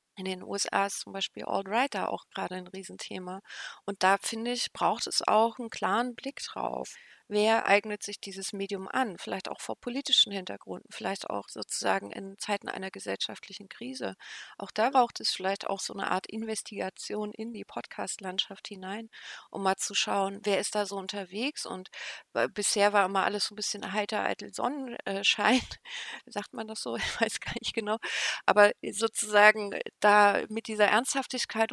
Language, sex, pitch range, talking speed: German, female, 195-225 Hz, 175 wpm